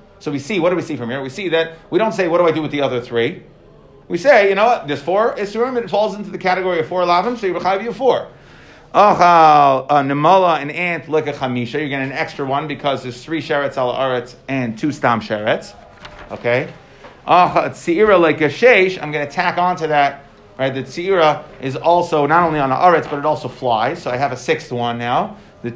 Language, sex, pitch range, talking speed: English, male, 130-165 Hz, 230 wpm